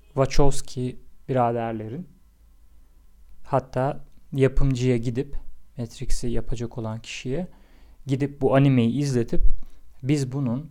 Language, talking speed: Turkish, 85 wpm